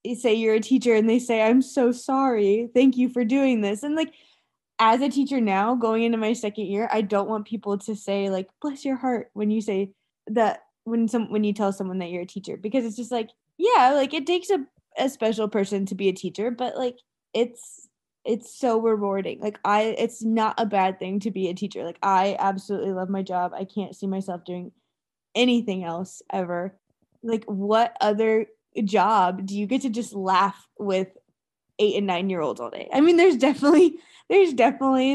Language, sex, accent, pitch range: English, female, American, 195-240 Hz